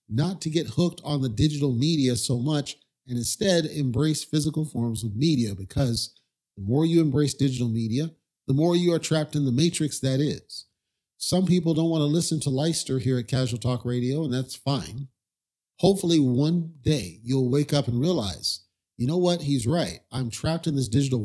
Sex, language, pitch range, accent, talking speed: male, English, 125-160 Hz, American, 190 wpm